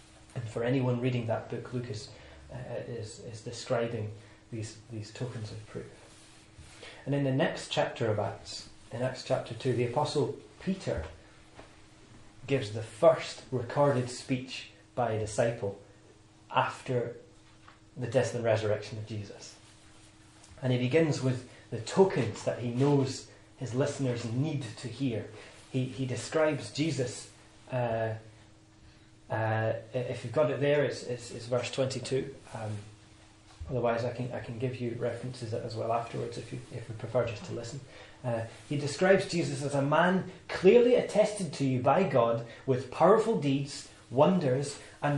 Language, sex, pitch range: English, male, 110-140 Hz